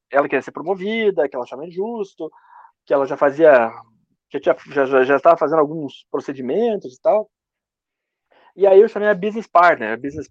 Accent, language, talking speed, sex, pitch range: Brazilian, Portuguese, 185 wpm, male, 155-220 Hz